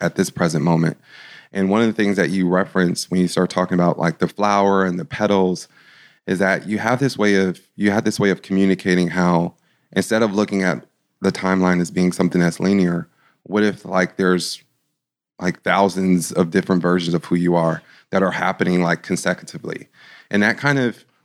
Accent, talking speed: American, 200 wpm